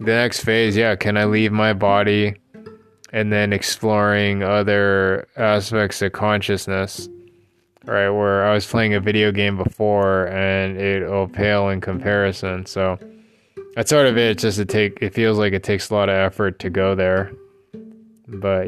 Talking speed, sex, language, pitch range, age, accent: 170 wpm, male, English, 100-115 Hz, 20-39, American